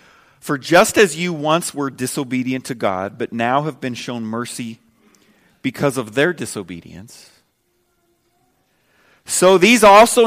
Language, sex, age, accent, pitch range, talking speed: English, male, 40-59, American, 125-200 Hz, 130 wpm